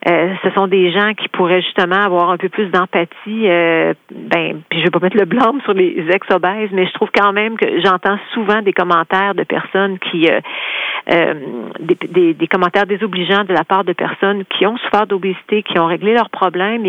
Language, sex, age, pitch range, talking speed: French, female, 40-59, 175-200 Hz, 215 wpm